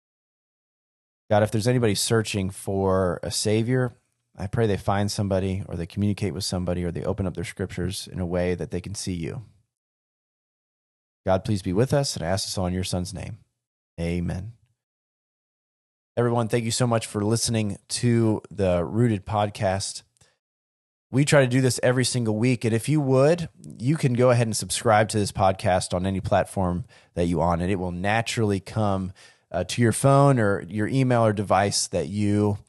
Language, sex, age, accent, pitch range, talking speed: English, male, 30-49, American, 95-115 Hz, 185 wpm